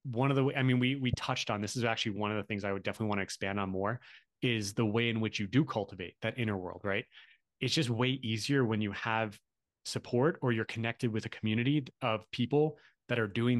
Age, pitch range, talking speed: 30-49, 105-125 Hz, 245 wpm